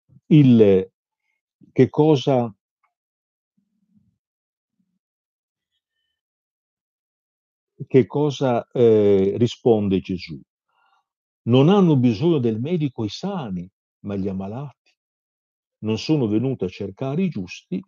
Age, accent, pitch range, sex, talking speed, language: 50-69, native, 105-170 Hz, male, 85 wpm, Italian